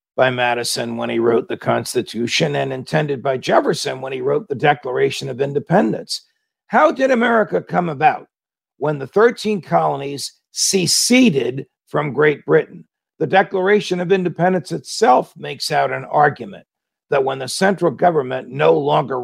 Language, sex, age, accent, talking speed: English, male, 50-69, American, 145 wpm